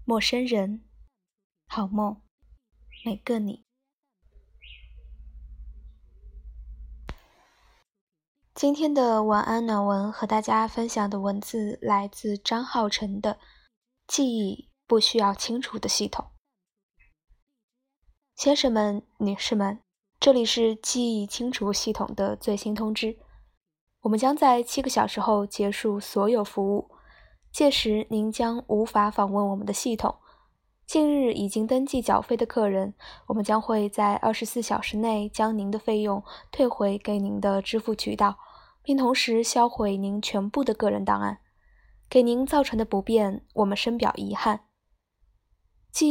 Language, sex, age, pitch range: Chinese, female, 20-39, 200-235 Hz